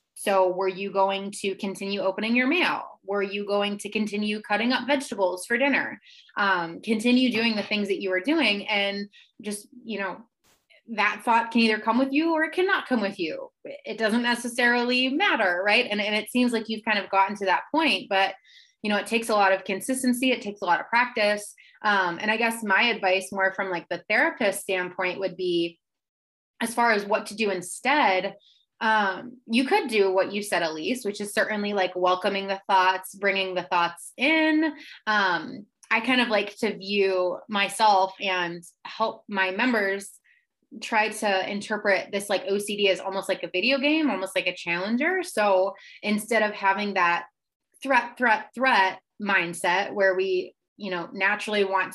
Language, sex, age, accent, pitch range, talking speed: English, female, 20-39, American, 190-240 Hz, 185 wpm